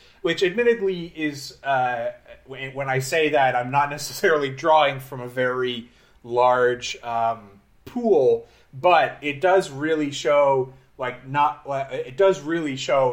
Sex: male